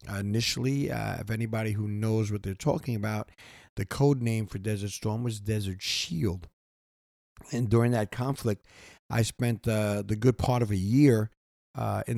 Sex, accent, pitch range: male, American, 105-125 Hz